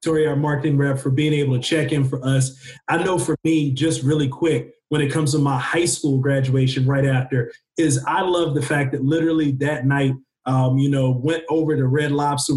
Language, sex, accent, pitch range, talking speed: English, male, American, 135-170 Hz, 220 wpm